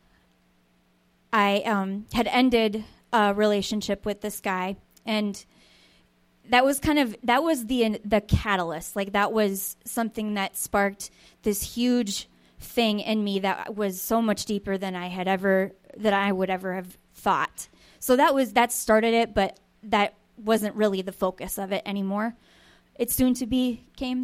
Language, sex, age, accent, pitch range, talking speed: English, female, 20-39, American, 190-230 Hz, 160 wpm